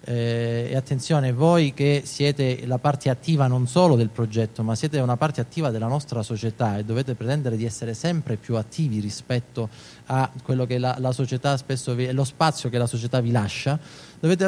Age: 30-49